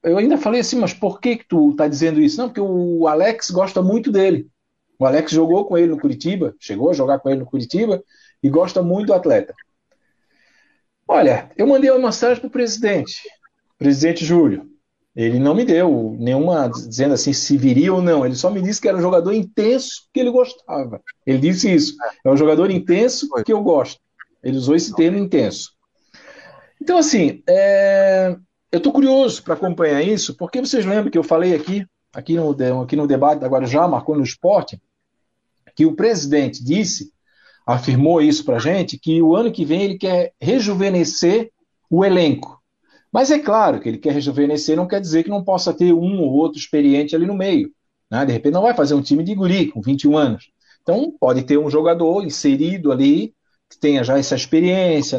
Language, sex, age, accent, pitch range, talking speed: Portuguese, male, 60-79, Brazilian, 150-225 Hz, 190 wpm